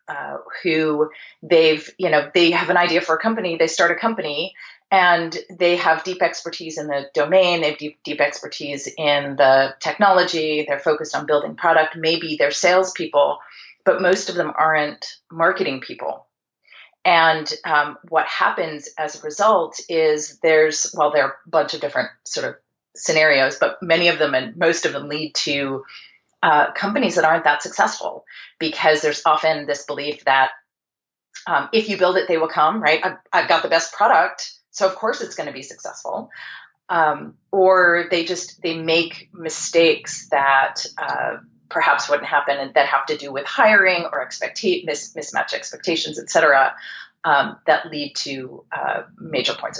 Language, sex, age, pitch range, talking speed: English, female, 30-49, 145-175 Hz, 170 wpm